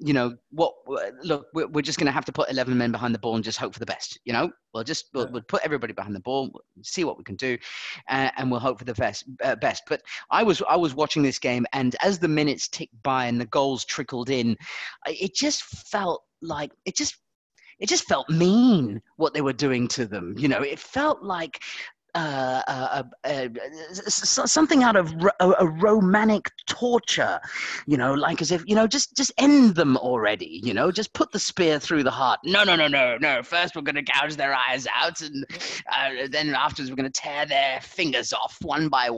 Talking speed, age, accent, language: 225 wpm, 30-49, British, English